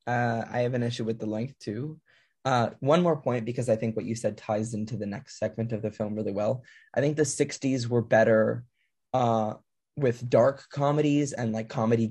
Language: English